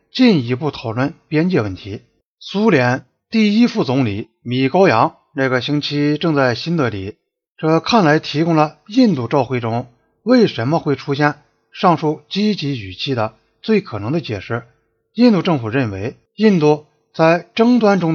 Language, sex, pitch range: Chinese, male, 125-180 Hz